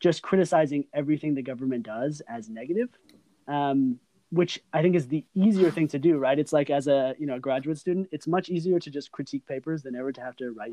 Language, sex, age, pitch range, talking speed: English, male, 20-39, 125-165 Hz, 225 wpm